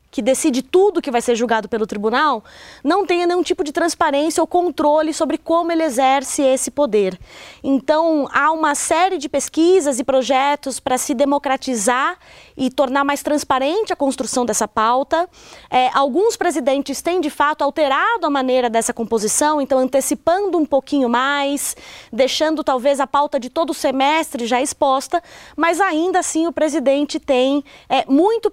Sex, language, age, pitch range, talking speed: female, Portuguese, 20-39, 260-330 Hz, 155 wpm